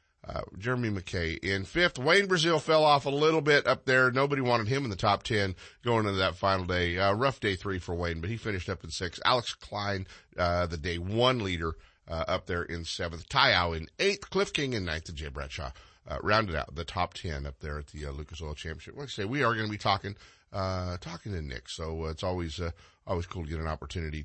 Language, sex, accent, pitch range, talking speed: English, male, American, 85-120 Hz, 245 wpm